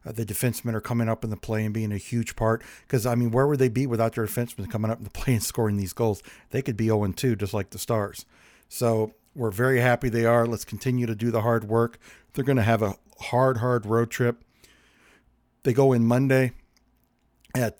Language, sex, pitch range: English, male, 115-130 Hz